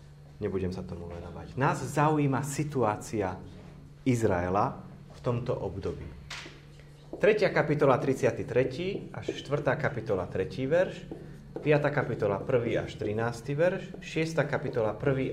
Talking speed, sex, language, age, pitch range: 110 wpm, male, Slovak, 30-49, 100-150 Hz